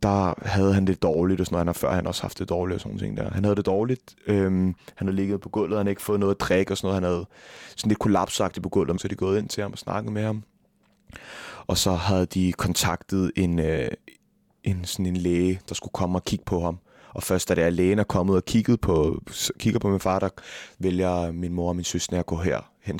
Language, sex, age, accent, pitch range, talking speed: Danish, male, 20-39, native, 90-105 Hz, 260 wpm